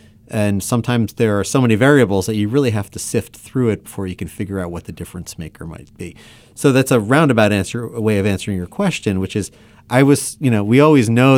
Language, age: English, 30-49